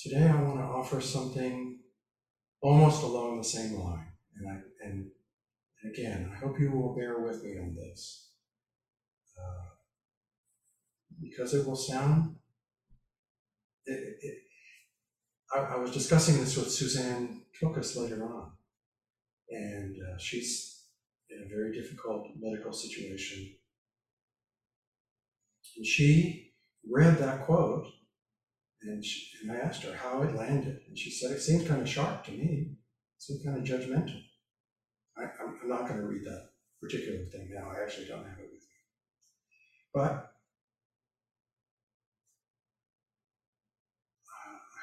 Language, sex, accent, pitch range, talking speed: English, male, American, 110-135 Hz, 125 wpm